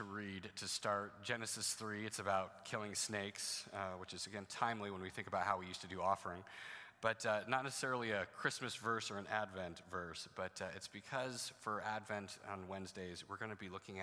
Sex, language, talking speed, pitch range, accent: male, English, 205 wpm, 95-110 Hz, American